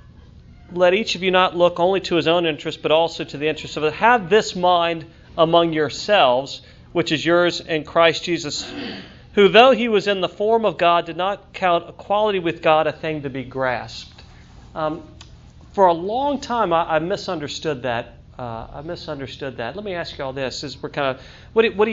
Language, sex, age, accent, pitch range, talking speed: English, male, 40-59, American, 135-180 Hz, 200 wpm